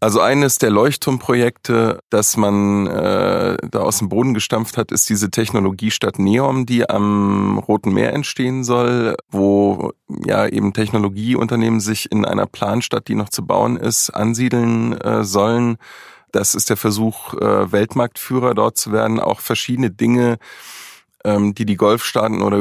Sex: male